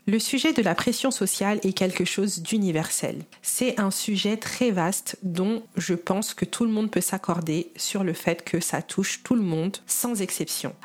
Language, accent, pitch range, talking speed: French, French, 180-230 Hz, 195 wpm